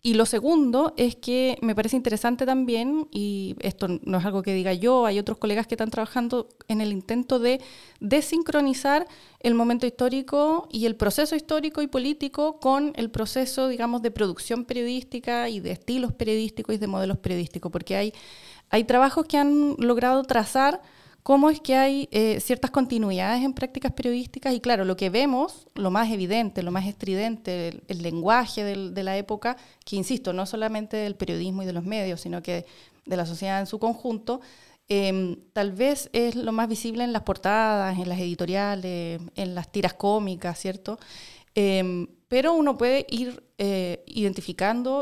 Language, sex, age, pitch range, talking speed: Spanish, female, 30-49, 195-250 Hz, 175 wpm